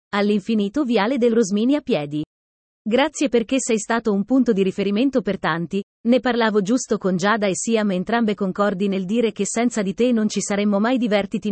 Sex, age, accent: female, 30-49, native